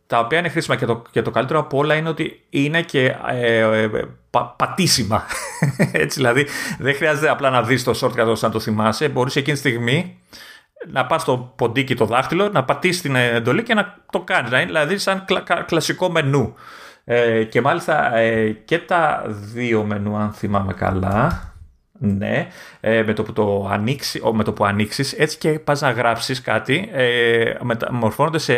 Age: 30-49